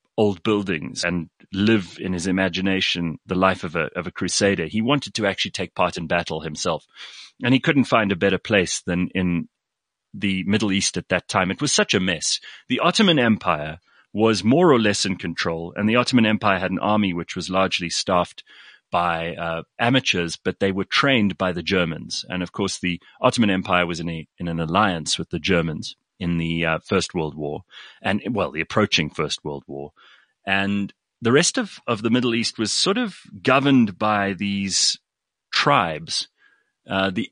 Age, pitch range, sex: 30-49, 85-110 Hz, male